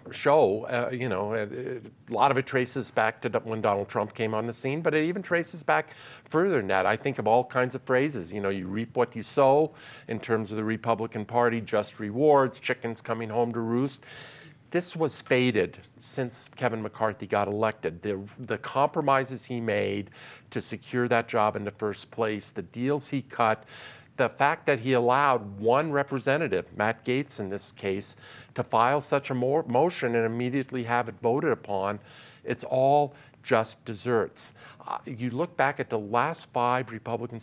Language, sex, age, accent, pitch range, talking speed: English, male, 50-69, American, 110-130 Hz, 185 wpm